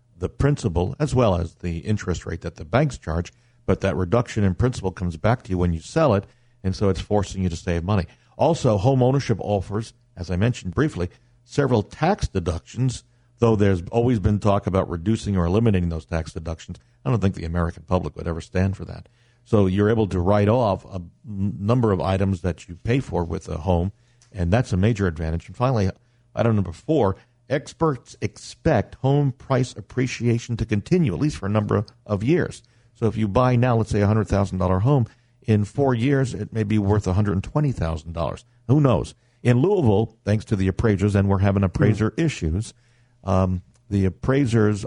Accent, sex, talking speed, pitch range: American, male, 190 wpm, 95-120 Hz